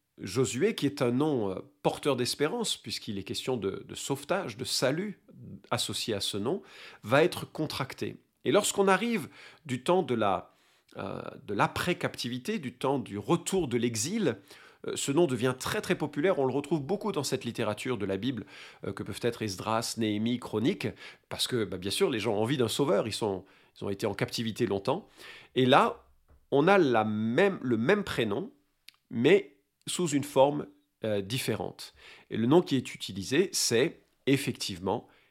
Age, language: 40-59, French